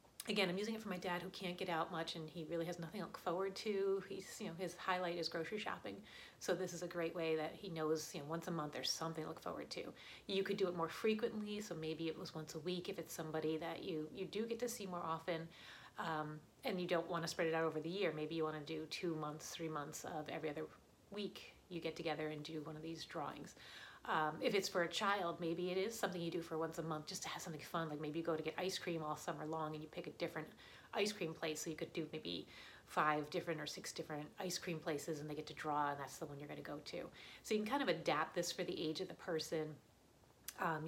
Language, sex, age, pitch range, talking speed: English, female, 30-49, 155-180 Hz, 275 wpm